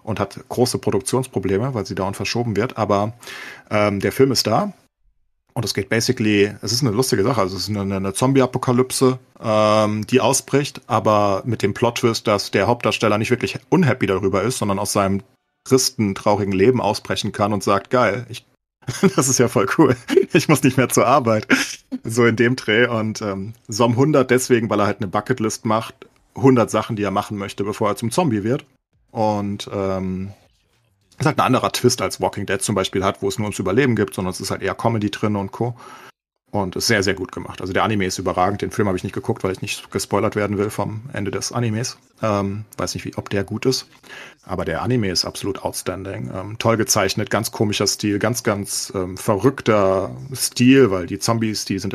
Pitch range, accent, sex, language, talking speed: 100-125 Hz, German, male, German, 205 wpm